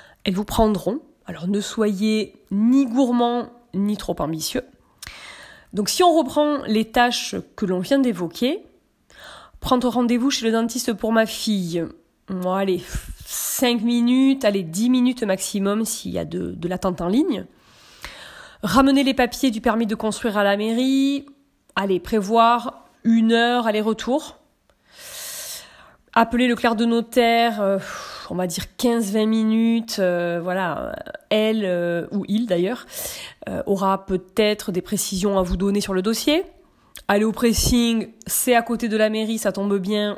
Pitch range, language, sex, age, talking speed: 195-250 Hz, French, female, 30-49, 150 wpm